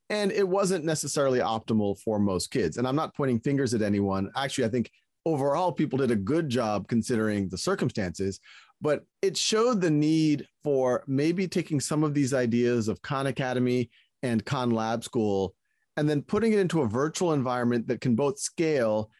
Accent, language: American, English